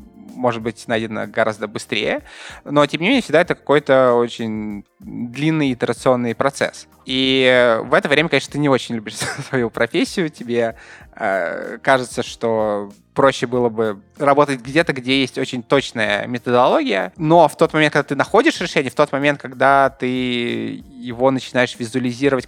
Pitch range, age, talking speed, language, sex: 120-145 Hz, 20-39, 150 wpm, Russian, male